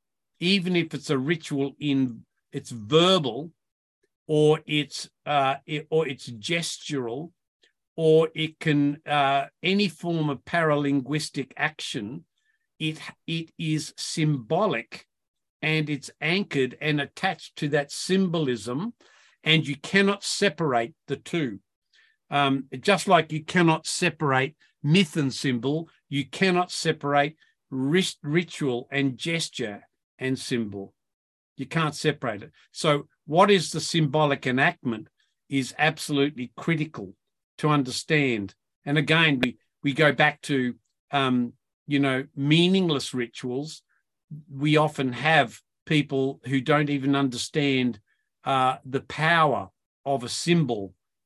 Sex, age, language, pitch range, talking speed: male, 50-69, English, 135-160 Hz, 120 wpm